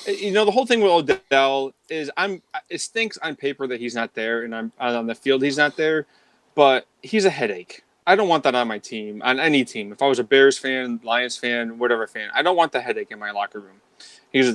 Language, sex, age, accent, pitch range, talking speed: English, male, 20-39, American, 120-155 Hz, 250 wpm